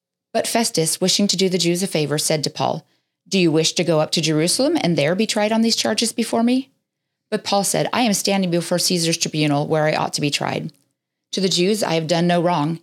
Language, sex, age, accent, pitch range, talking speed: English, female, 40-59, American, 160-200 Hz, 245 wpm